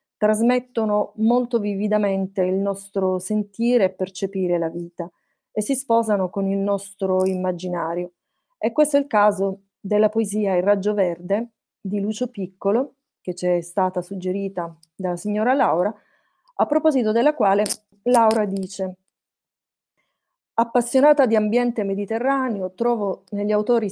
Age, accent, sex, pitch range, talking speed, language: 30-49, native, female, 190-230 Hz, 130 wpm, Italian